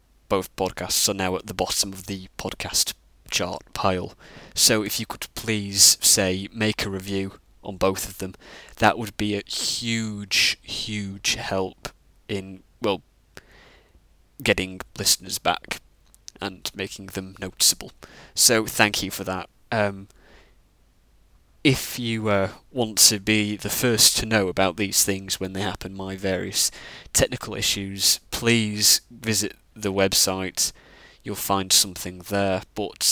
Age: 20-39